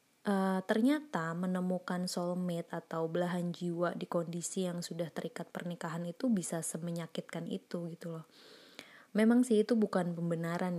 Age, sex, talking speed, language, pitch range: 20-39, female, 135 wpm, Indonesian, 165-195 Hz